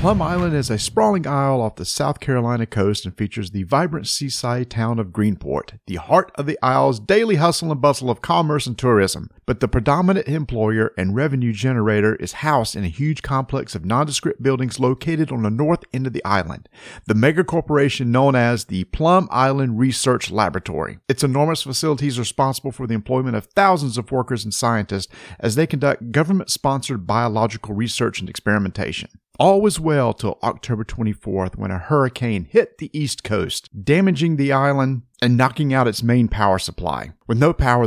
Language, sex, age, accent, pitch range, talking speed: English, male, 50-69, American, 110-140 Hz, 180 wpm